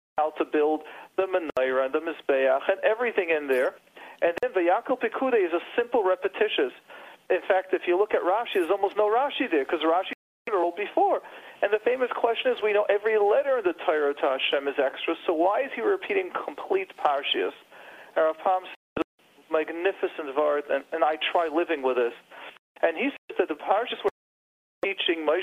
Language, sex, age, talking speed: English, male, 40-59, 190 wpm